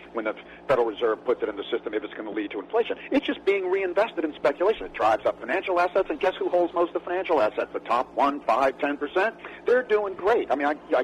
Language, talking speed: English, 265 wpm